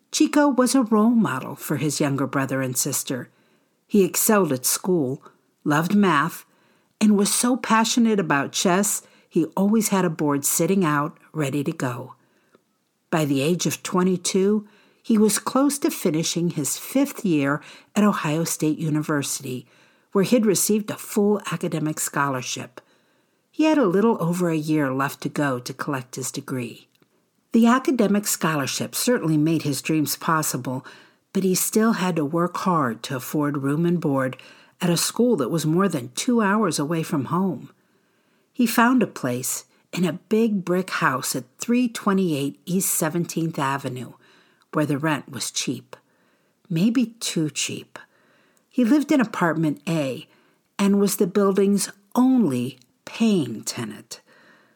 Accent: American